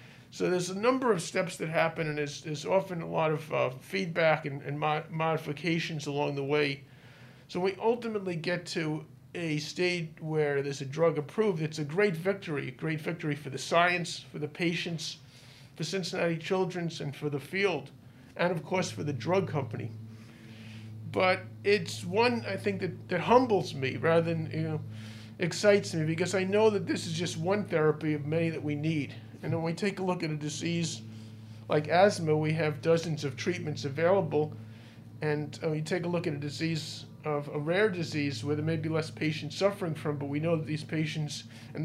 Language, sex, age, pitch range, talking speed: English, male, 40-59, 145-175 Hz, 195 wpm